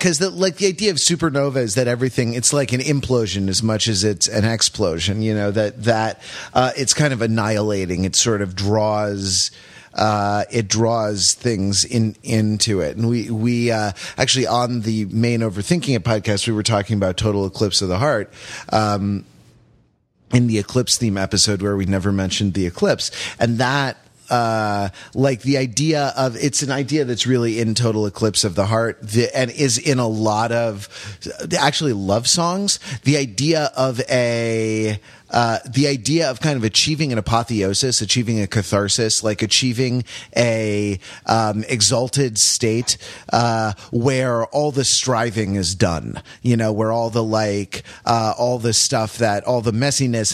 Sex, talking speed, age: male, 170 wpm, 30-49